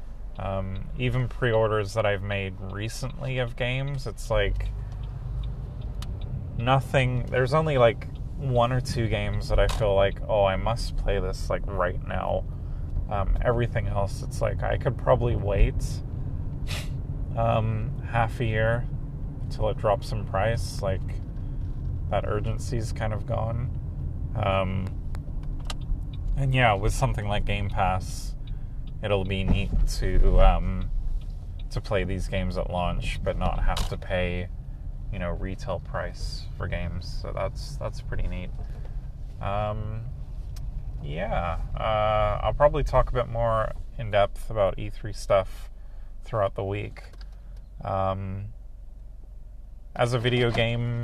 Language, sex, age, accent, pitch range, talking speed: English, male, 30-49, American, 95-120 Hz, 135 wpm